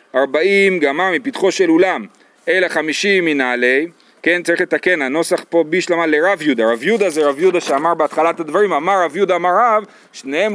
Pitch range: 150-205 Hz